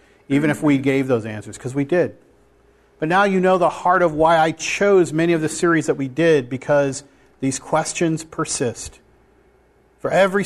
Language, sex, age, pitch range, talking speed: English, male, 40-59, 155-205 Hz, 185 wpm